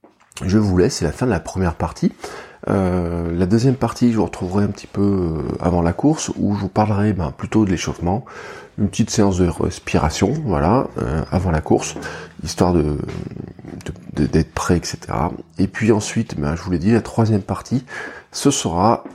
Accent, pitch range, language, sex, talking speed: French, 85-105 Hz, French, male, 180 wpm